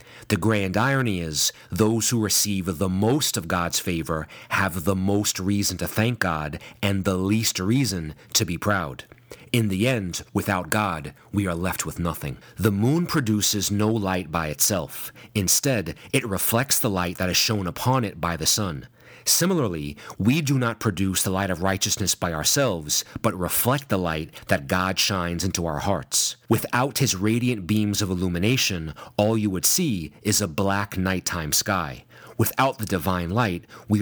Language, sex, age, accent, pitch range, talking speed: English, male, 40-59, American, 90-115 Hz, 170 wpm